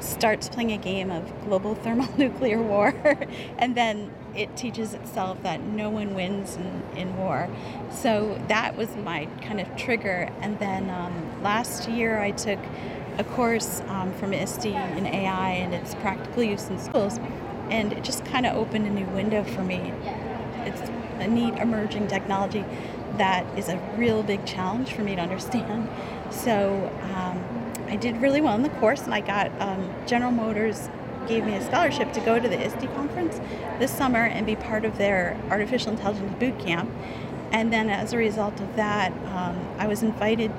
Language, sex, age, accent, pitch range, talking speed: English, female, 40-59, American, 195-230 Hz, 175 wpm